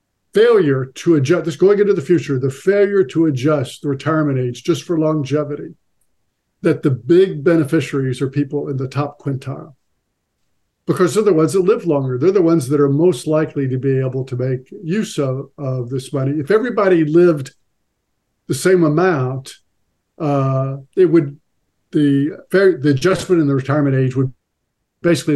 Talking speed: 165 wpm